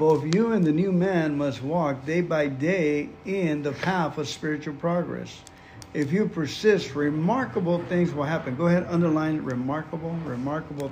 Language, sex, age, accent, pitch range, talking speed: English, male, 60-79, American, 135-170 Hz, 160 wpm